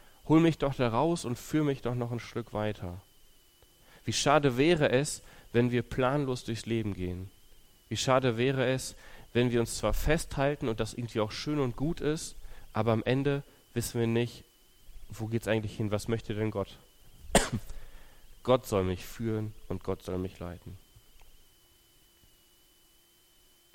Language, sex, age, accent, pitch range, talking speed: German, male, 30-49, German, 100-125 Hz, 160 wpm